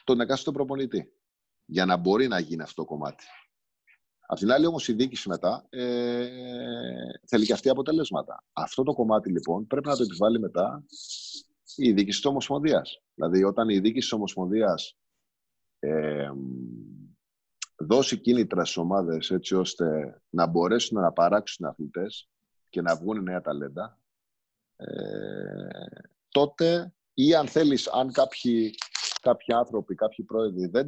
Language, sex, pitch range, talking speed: Greek, male, 90-130 Hz, 140 wpm